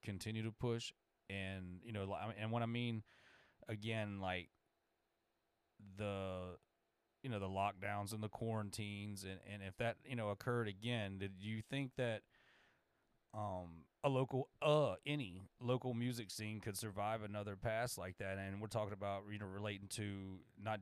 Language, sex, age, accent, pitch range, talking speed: English, male, 30-49, American, 100-115 Hz, 160 wpm